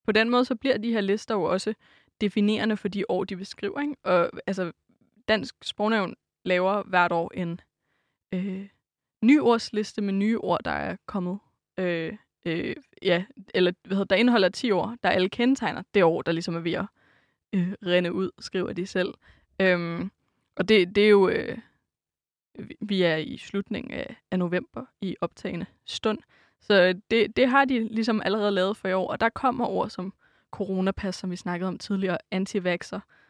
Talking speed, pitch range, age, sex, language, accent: 175 wpm, 185-220 Hz, 20-39, female, Danish, native